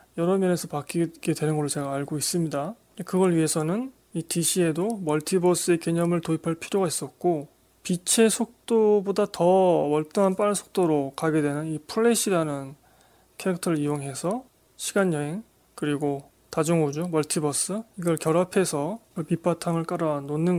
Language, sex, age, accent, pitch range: Korean, male, 20-39, native, 155-205 Hz